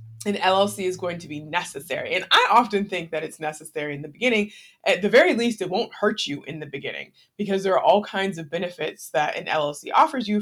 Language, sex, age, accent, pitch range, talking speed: English, female, 20-39, American, 170-220 Hz, 230 wpm